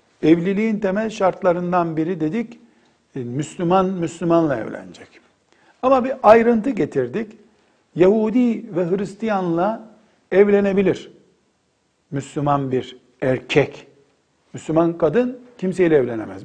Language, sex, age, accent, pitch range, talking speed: Turkish, male, 60-79, native, 145-210 Hz, 85 wpm